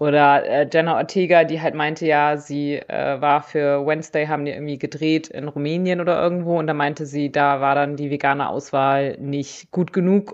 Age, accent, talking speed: 30-49, German, 195 wpm